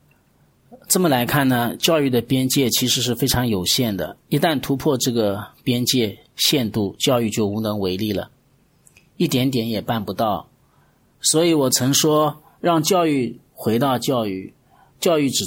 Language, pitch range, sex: Chinese, 110-150 Hz, male